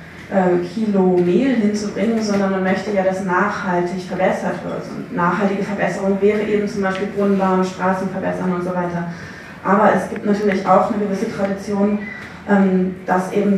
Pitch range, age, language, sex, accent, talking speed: 185-210 Hz, 20-39, German, female, German, 145 wpm